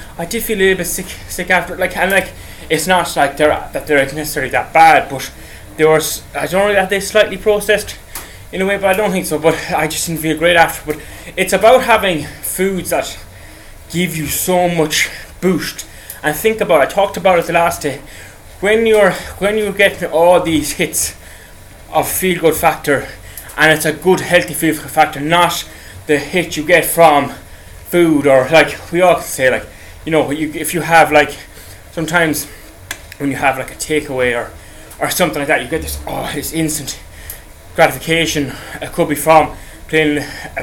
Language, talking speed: English, 195 wpm